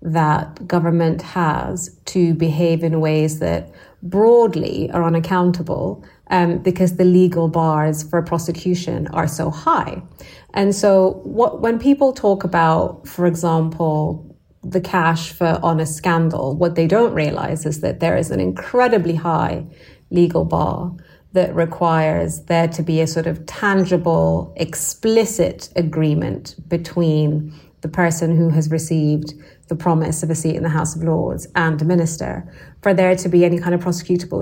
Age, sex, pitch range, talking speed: 30-49, female, 160-185 Hz, 150 wpm